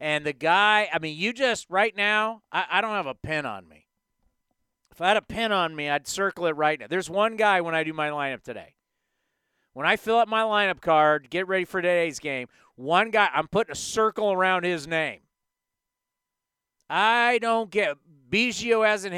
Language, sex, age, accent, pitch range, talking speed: English, male, 40-59, American, 150-205 Hz, 200 wpm